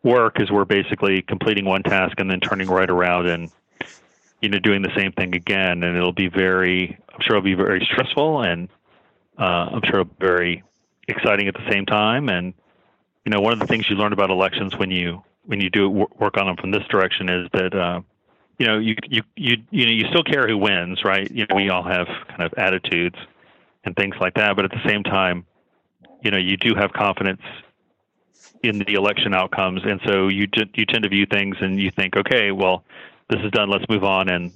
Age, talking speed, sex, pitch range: 40-59, 220 wpm, male, 90-105 Hz